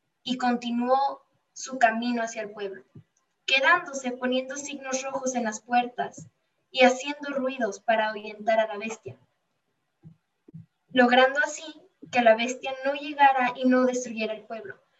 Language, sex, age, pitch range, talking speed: Spanish, female, 10-29, 220-275 Hz, 135 wpm